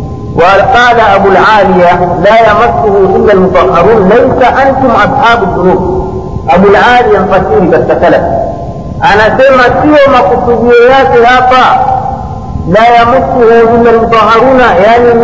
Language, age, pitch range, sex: Swahili, 50-69, 210-260 Hz, male